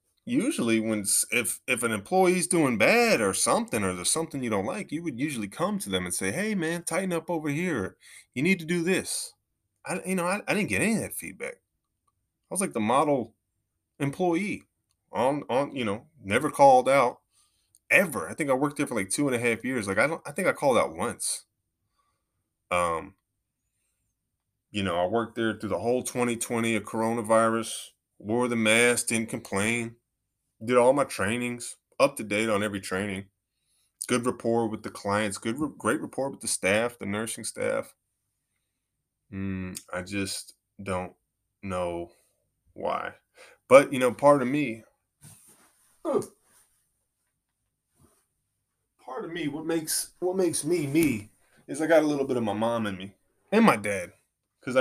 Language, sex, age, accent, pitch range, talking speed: English, male, 20-39, American, 100-160 Hz, 175 wpm